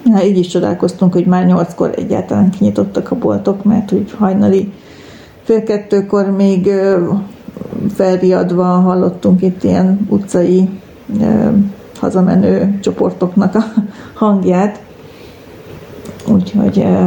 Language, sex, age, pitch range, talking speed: Hungarian, female, 40-59, 180-205 Hz, 100 wpm